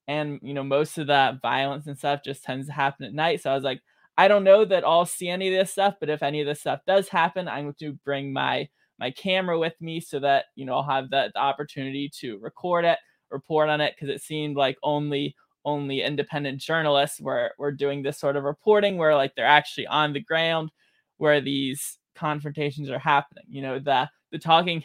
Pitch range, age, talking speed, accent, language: 140-165 Hz, 20-39, 225 wpm, American, English